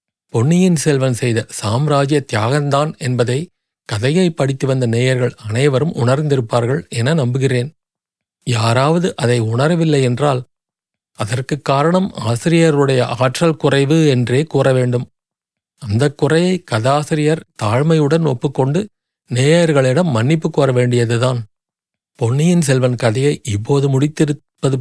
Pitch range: 125-160 Hz